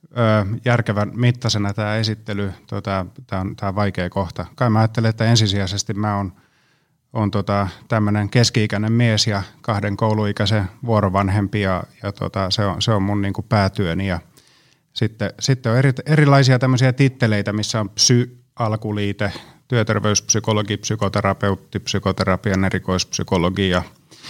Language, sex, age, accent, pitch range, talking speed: Finnish, male, 30-49, native, 100-125 Hz, 120 wpm